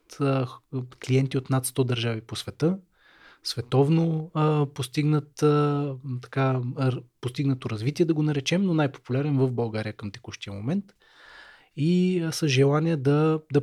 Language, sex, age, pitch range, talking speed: Bulgarian, male, 20-39, 125-150 Hz, 130 wpm